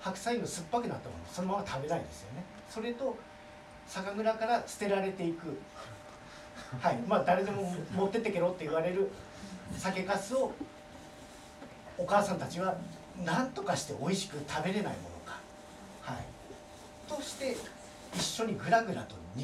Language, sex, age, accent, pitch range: Japanese, male, 40-59, native, 175-225 Hz